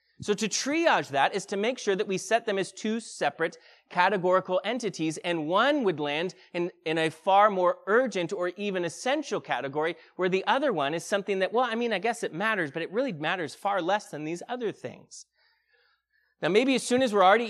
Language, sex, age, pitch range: English, male, 30-49, 175-240 Hz